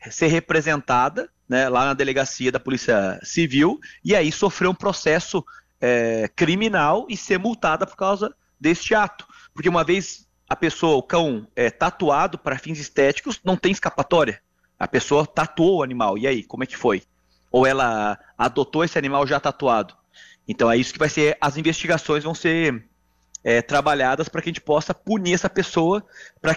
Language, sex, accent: Portuguese, male, Brazilian